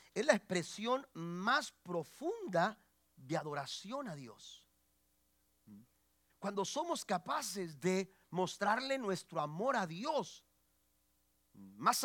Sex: male